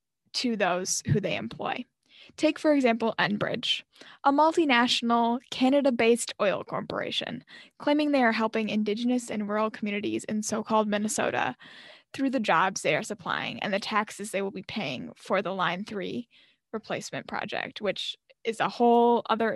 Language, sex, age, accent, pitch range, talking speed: English, female, 10-29, American, 210-255 Hz, 150 wpm